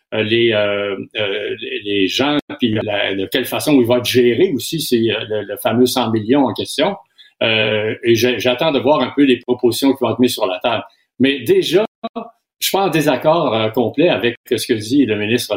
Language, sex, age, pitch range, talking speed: French, male, 50-69, 115-140 Hz, 200 wpm